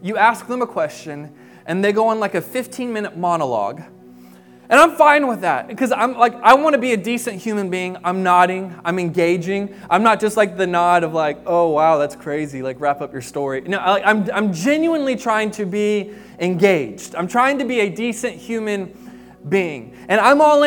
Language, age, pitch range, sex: English, 20-39, 165-255 Hz, male